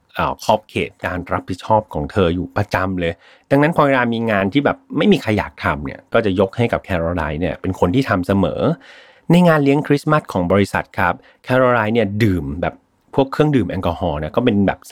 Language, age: Thai, 30-49